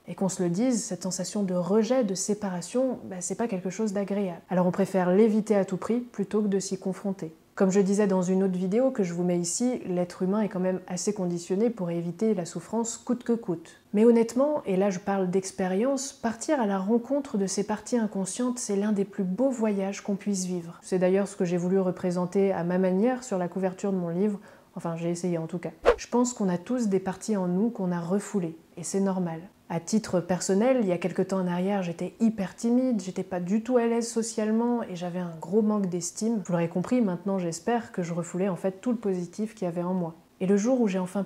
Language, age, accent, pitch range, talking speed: English, 30-49, French, 180-215 Hz, 240 wpm